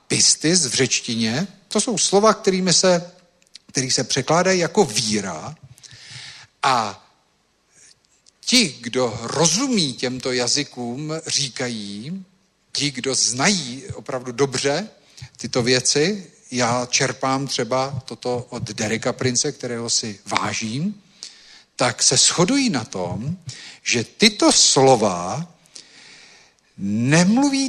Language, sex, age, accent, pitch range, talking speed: Czech, male, 50-69, native, 125-190 Hz, 100 wpm